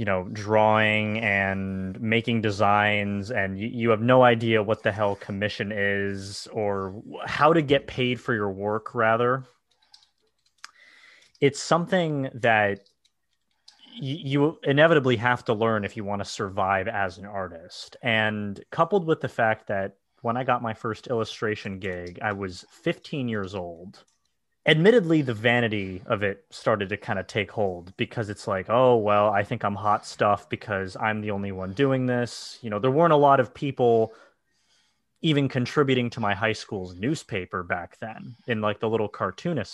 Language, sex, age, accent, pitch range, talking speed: English, male, 30-49, American, 100-130 Hz, 165 wpm